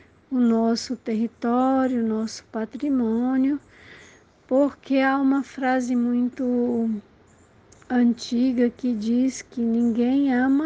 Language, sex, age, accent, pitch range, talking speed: Portuguese, female, 60-79, Brazilian, 230-260 Hz, 95 wpm